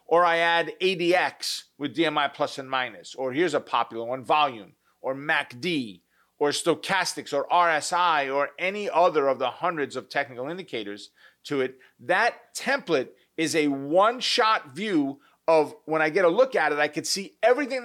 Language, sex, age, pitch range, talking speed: English, male, 40-59, 155-220 Hz, 170 wpm